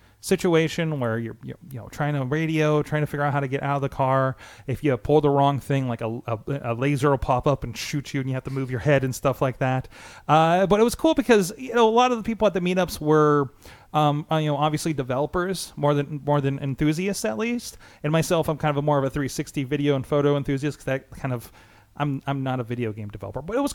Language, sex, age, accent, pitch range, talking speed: English, male, 30-49, American, 130-165 Hz, 265 wpm